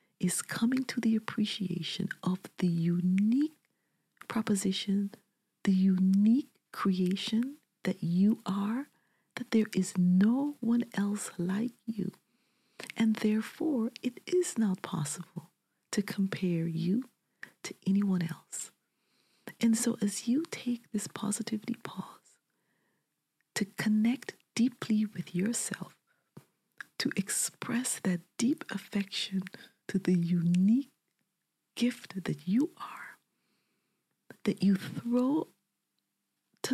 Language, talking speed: English, 105 wpm